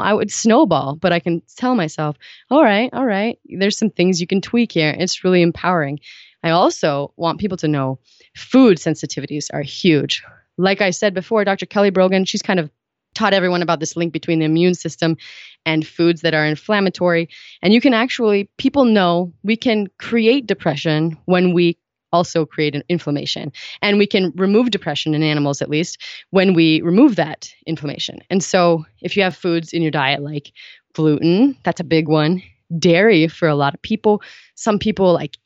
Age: 20-39